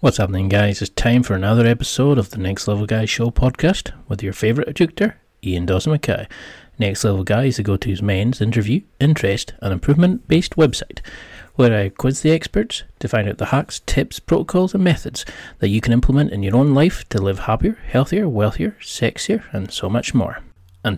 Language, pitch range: English, 100-130 Hz